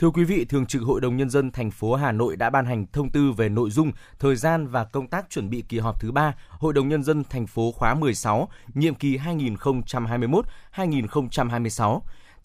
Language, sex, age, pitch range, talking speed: Vietnamese, male, 20-39, 120-145 Hz, 205 wpm